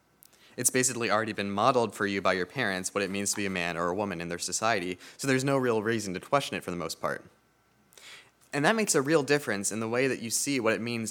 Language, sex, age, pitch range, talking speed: English, male, 20-39, 100-130 Hz, 270 wpm